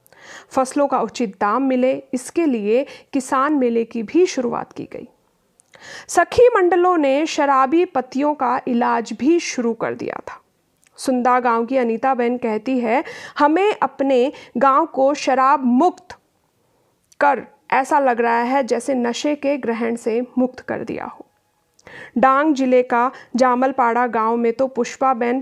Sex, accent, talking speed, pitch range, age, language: female, native, 145 wpm, 240-290 Hz, 40-59, Hindi